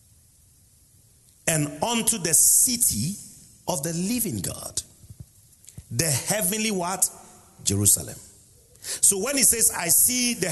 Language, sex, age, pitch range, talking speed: English, male, 50-69, 120-180 Hz, 110 wpm